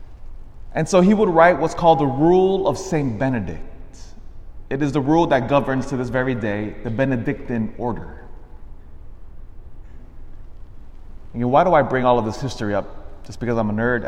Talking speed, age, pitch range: 170 wpm, 20-39, 105-160 Hz